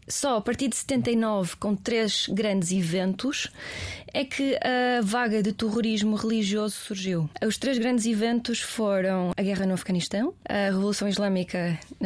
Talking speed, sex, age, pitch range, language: 145 wpm, female, 20-39, 195-220 Hz, Portuguese